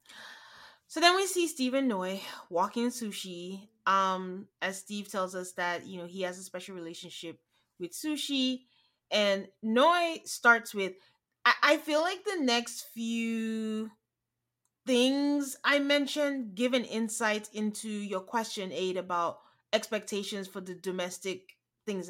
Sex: female